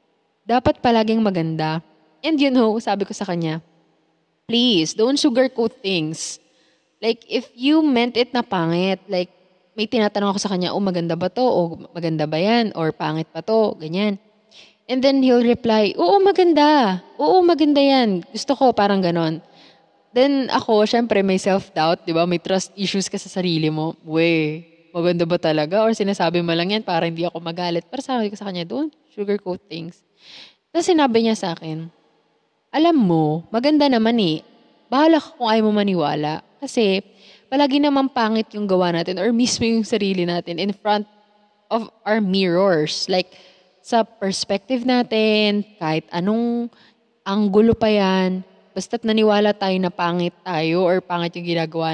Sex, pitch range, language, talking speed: female, 175-230 Hz, English, 165 wpm